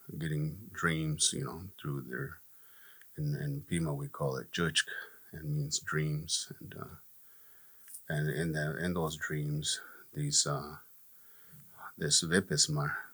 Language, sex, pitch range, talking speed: English, male, 75-90 Hz, 130 wpm